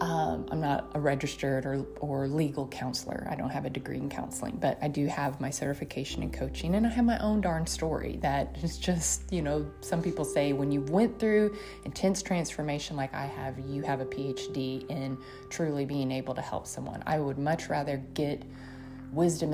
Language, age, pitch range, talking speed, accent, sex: English, 30-49, 130-155 Hz, 200 wpm, American, female